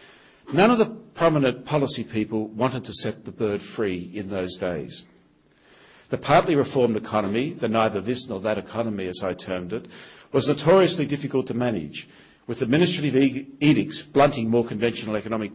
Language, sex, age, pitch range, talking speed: English, male, 50-69, 105-135 Hz, 160 wpm